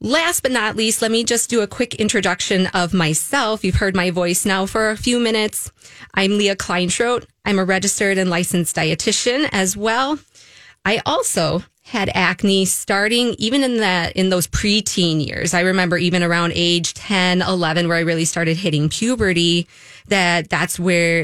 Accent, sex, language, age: American, female, English, 20-39